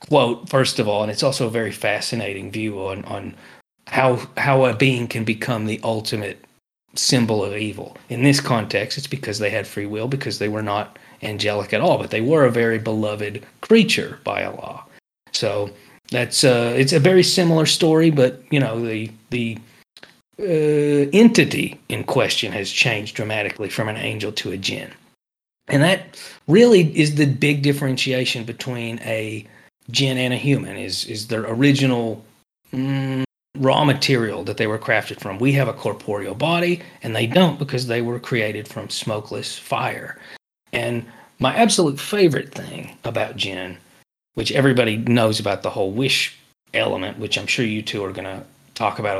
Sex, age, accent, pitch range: male, 30-49, American, 110-140 Hz